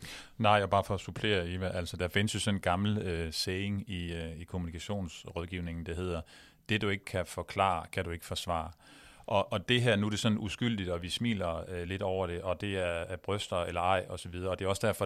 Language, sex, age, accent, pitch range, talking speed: Danish, male, 30-49, native, 90-105 Hz, 245 wpm